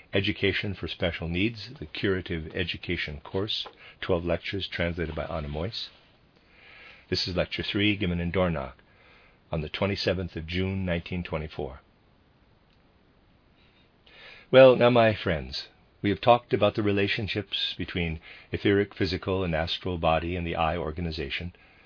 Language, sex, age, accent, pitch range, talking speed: English, male, 50-69, American, 85-105 Hz, 130 wpm